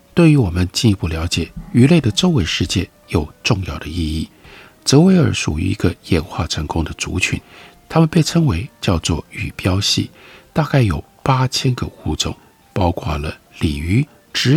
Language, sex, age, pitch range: Chinese, male, 50-69, 90-145 Hz